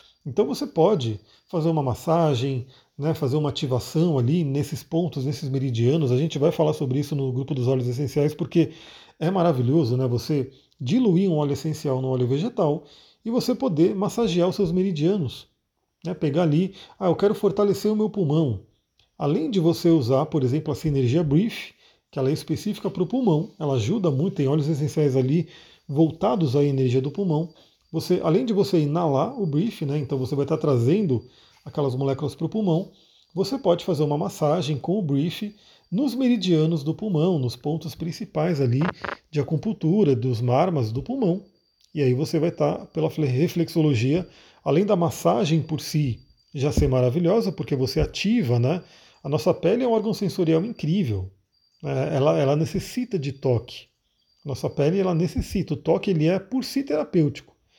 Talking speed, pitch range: 175 wpm, 140-180 Hz